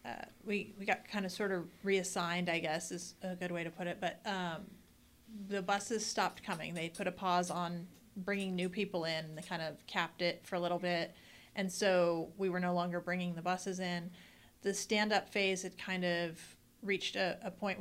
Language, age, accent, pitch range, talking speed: English, 30-49, American, 170-190 Hz, 210 wpm